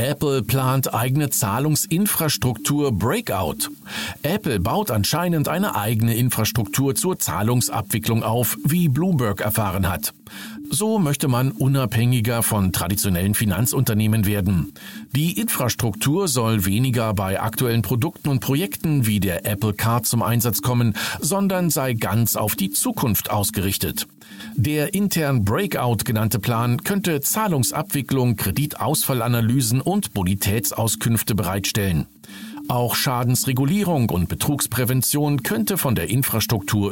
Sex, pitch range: male, 105-155 Hz